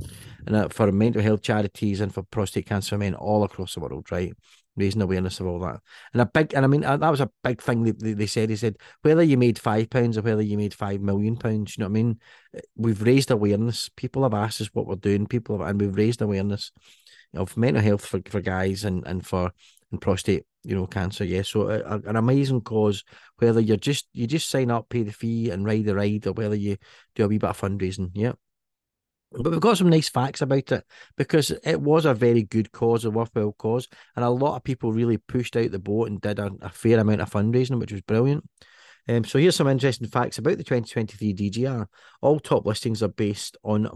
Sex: male